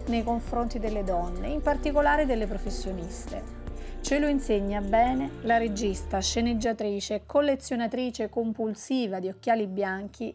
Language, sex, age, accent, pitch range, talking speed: Italian, female, 30-49, native, 195-250 Hz, 115 wpm